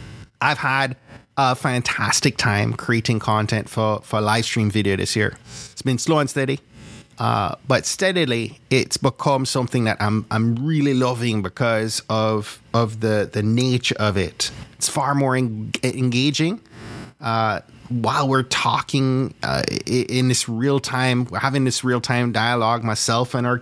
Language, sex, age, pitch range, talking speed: English, male, 30-49, 110-135 Hz, 150 wpm